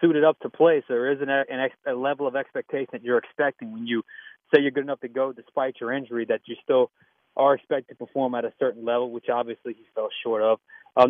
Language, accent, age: English, American, 30-49